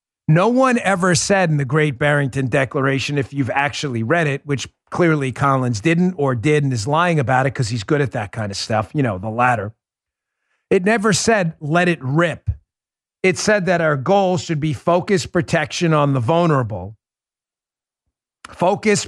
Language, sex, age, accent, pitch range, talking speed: English, male, 40-59, American, 140-195 Hz, 175 wpm